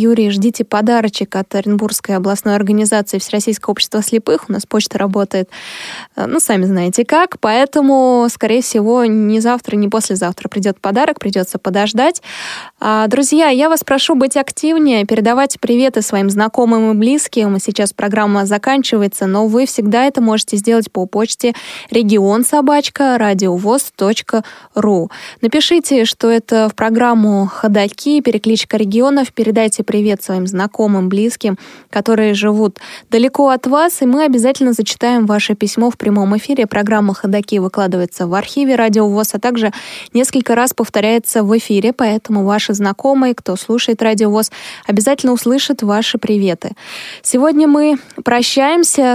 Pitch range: 205-250 Hz